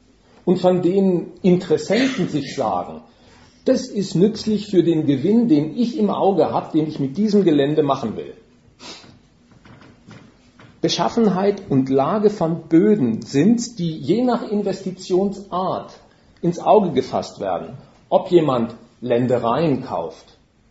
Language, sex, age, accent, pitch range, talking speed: German, male, 50-69, German, 155-210 Hz, 120 wpm